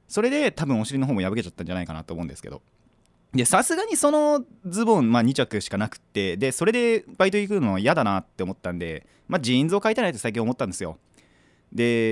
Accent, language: native, Japanese